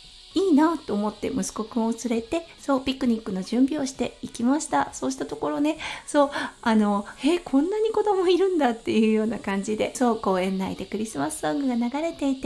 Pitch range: 215-295 Hz